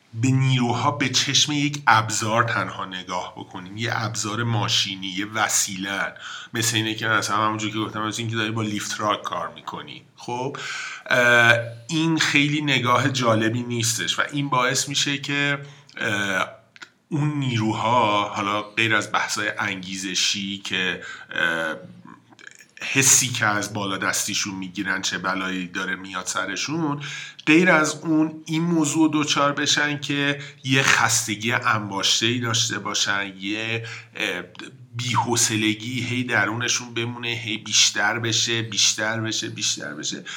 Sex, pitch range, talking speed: male, 110-145 Hz, 125 wpm